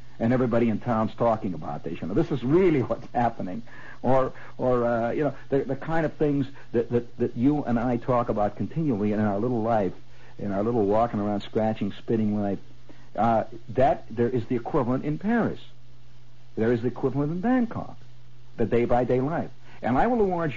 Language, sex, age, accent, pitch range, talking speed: English, male, 60-79, American, 115-170 Hz, 195 wpm